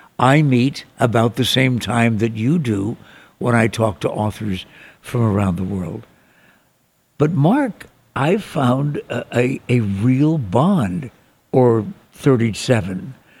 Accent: American